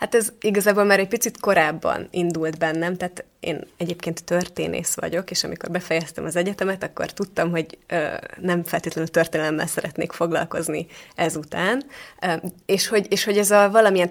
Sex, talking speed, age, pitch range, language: female, 145 wpm, 20-39, 165-195 Hz, Hungarian